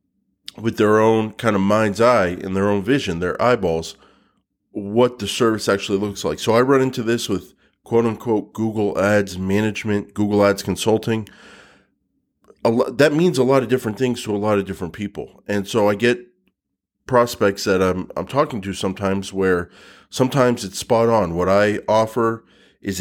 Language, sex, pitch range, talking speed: English, male, 95-115 Hz, 175 wpm